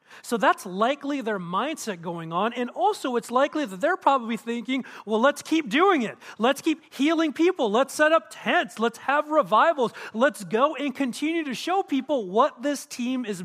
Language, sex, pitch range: English, male, 185-245 Hz